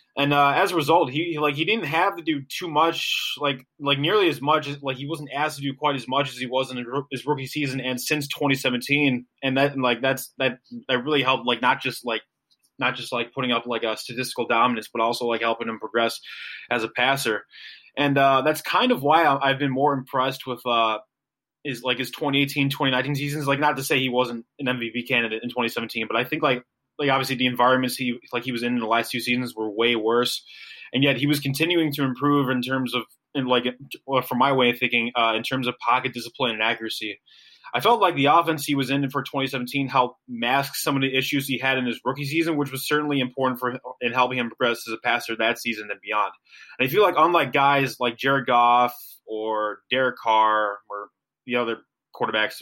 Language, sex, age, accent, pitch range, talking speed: English, male, 20-39, American, 120-140 Hz, 225 wpm